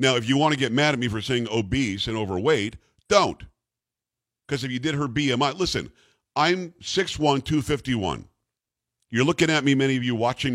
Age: 50-69